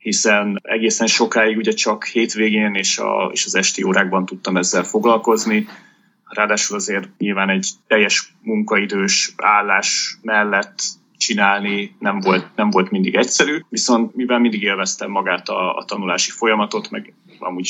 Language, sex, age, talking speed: Hungarian, male, 30-49, 140 wpm